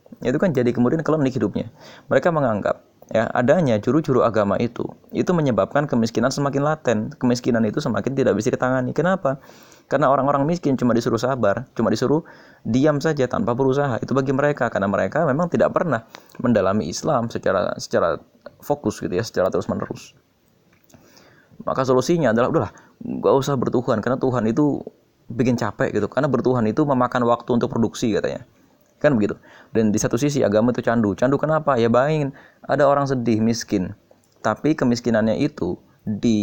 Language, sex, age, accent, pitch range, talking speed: Indonesian, male, 20-39, native, 110-140 Hz, 160 wpm